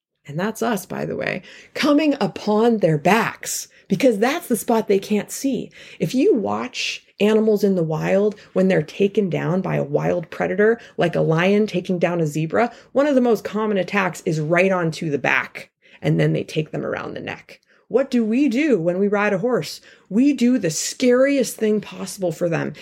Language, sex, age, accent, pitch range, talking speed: English, female, 30-49, American, 175-235 Hz, 195 wpm